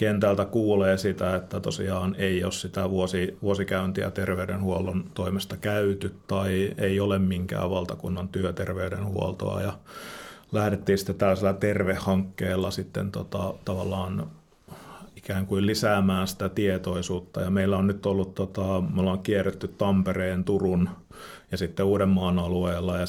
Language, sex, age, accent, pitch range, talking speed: Finnish, male, 30-49, native, 90-100 Hz, 120 wpm